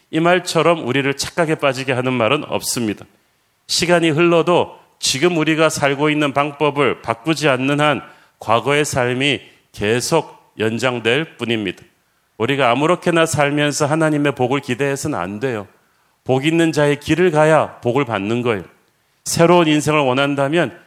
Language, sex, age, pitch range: Korean, male, 40-59, 135-165 Hz